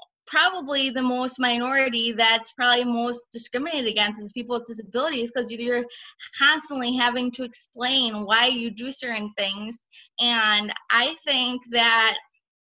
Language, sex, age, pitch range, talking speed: English, female, 20-39, 220-250 Hz, 135 wpm